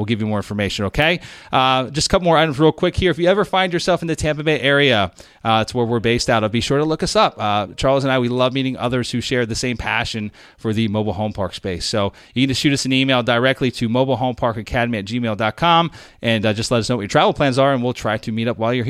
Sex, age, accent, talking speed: male, 30-49, American, 285 wpm